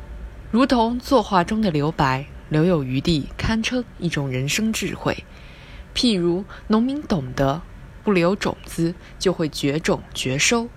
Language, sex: Chinese, female